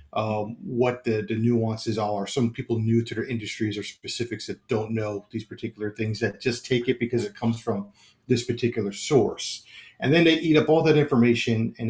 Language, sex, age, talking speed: English, male, 40-59, 200 wpm